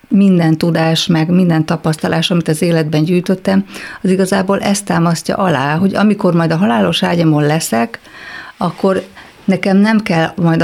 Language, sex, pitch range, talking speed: Hungarian, female, 160-190 Hz, 145 wpm